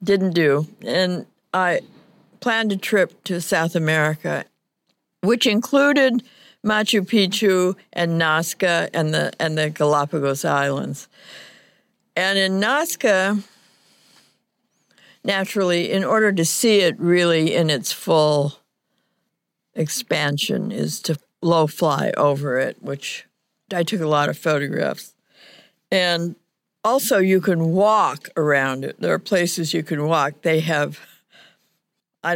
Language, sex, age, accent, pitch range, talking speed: English, female, 60-79, American, 165-215 Hz, 120 wpm